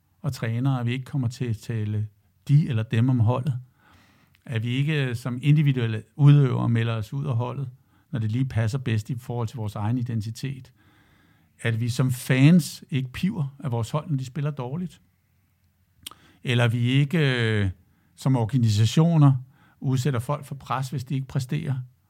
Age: 60-79